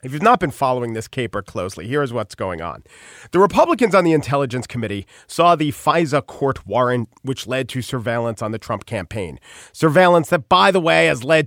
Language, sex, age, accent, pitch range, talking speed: English, male, 40-59, American, 120-165 Hz, 200 wpm